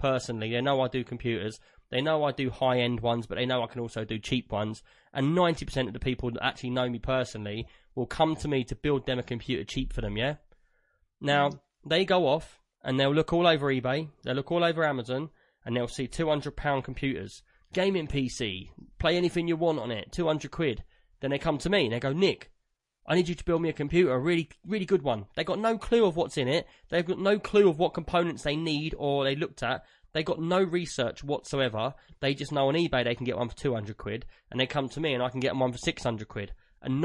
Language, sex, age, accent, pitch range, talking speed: English, male, 20-39, British, 125-165 Hz, 245 wpm